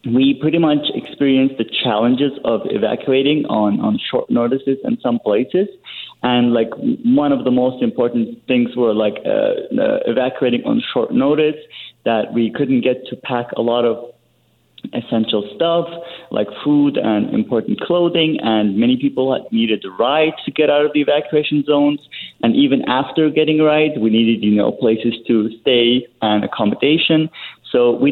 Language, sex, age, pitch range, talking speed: English, male, 30-49, 115-155 Hz, 165 wpm